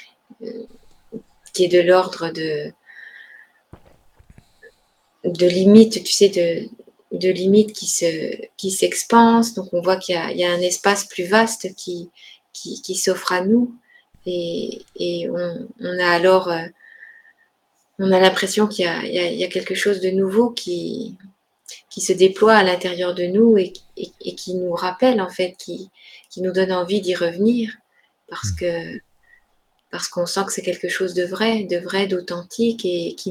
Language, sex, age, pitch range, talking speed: French, female, 30-49, 175-215 Hz, 175 wpm